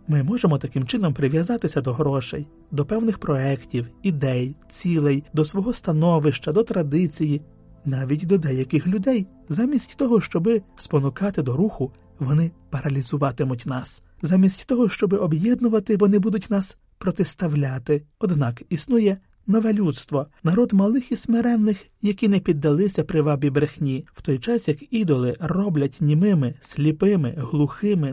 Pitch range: 140-195 Hz